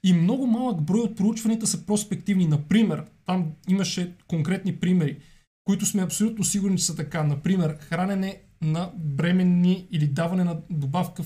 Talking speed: 150 wpm